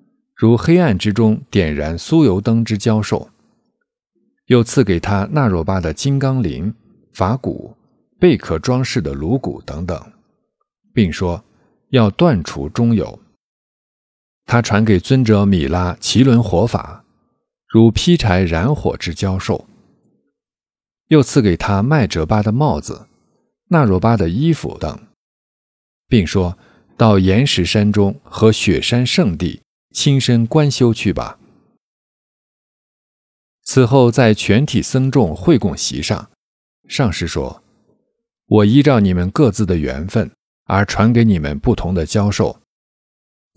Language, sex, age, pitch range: Chinese, male, 50-69, 95-130 Hz